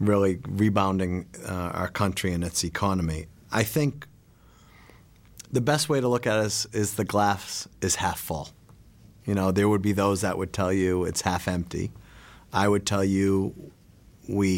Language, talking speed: English, 175 wpm